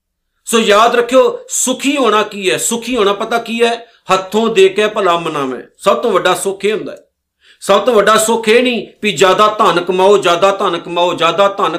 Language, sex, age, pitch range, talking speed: Punjabi, male, 50-69, 170-215 Hz, 200 wpm